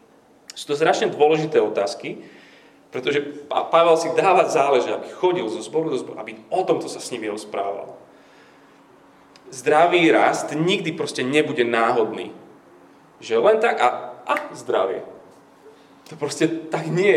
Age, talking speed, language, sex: 30-49, 135 wpm, Slovak, male